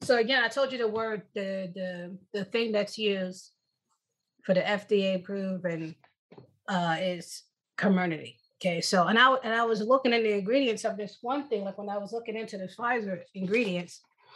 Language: English